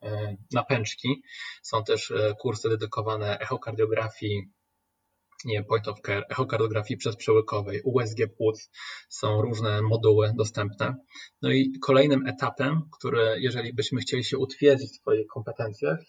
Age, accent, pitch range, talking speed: 20-39, native, 110-135 Hz, 115 wpm